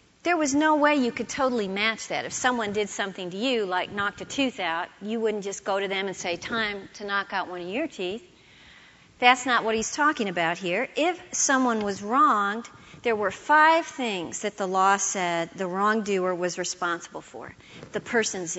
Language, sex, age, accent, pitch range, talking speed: English, female, 40-59, American, 190-255 Hz, 200 wpm